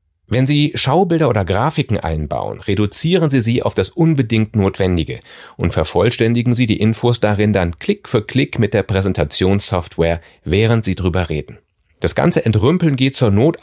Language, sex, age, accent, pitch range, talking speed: German, male, 40-59, German, 90-130 Hz, 160 wpm